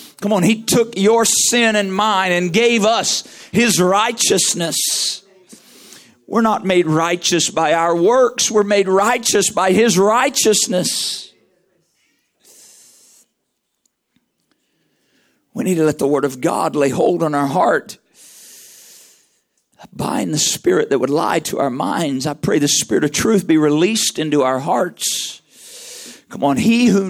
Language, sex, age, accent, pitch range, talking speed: English, male, 50-69, American, 185-250 Hz, 140 wpm